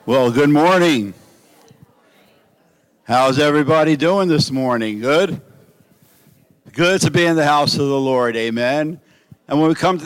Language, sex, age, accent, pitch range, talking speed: English, male, 60-79, American, 120-155 Hz, 145 wpm